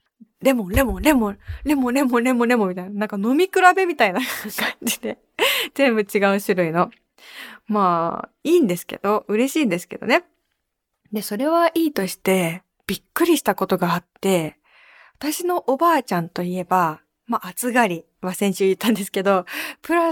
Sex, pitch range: female, 185-300 Hz